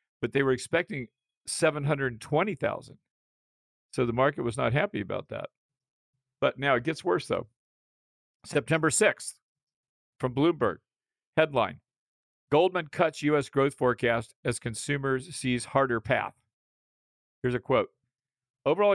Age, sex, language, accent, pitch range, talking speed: 50-69, male, English, American, 115-150 Hz, 120 wpm